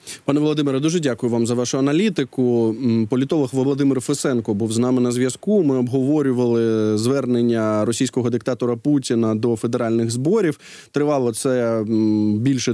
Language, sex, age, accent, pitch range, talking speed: Ukrainian, male, 20-39, native, 120-140 Hz, 130 wpm